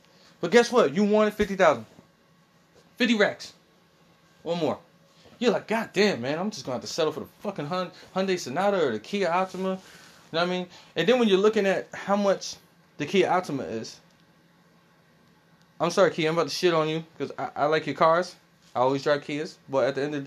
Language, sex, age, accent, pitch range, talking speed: English, male, 20-39, American, 145-195 Hz, 215 wpm